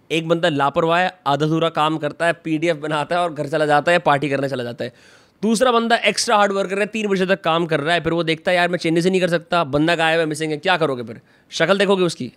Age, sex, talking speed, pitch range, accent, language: 20-39, male, 275 wpm, 160-205 Hz, native, Hindi